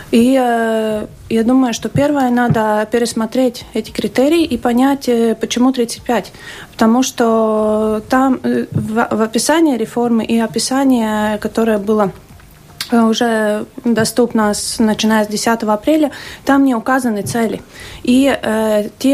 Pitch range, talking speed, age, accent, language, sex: 220-255 Hz, 135 wpm, 30-49, native, Russian, female